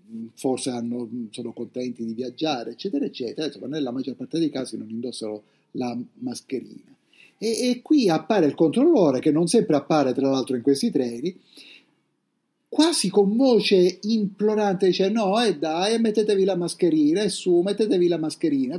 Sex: male